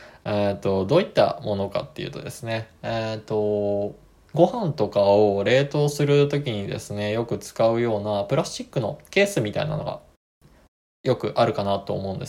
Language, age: Japanese, 20-39